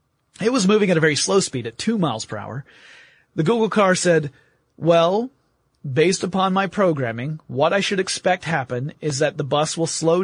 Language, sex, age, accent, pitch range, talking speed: English, male, 30-49, American, 140-185 Hz, 195 wpm